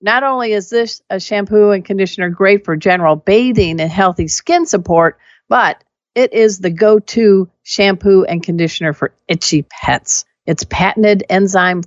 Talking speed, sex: 150 wpm, female